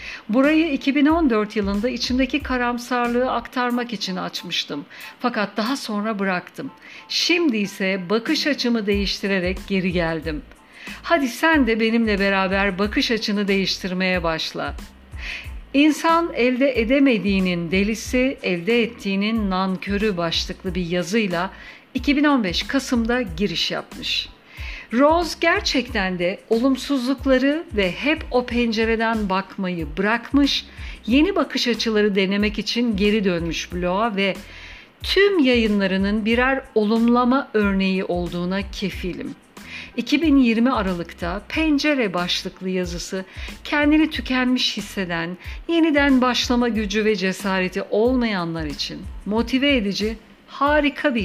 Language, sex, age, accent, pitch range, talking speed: Turkish, female, 60-79, native, 195-260 Hz, 100 wpm